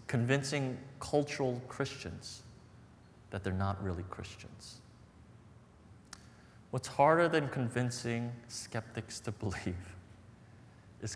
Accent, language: American, English